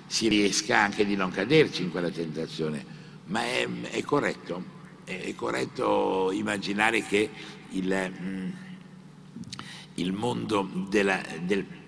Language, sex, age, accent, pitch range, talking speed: Italian, male, 60-79, native, 90-110 Hz, 115 wpm